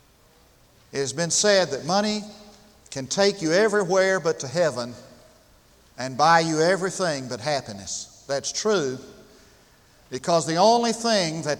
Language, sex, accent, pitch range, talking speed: English, male, American, 155-210 Hz, 135 wpm